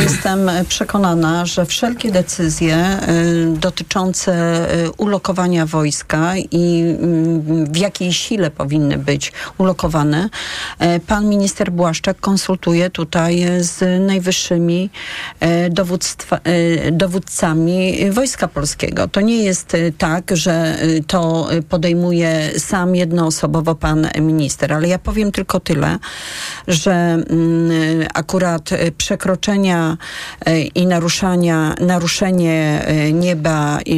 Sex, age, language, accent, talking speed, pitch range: female, 40-59, Polish, native, 85 wpm, 155-180 Hz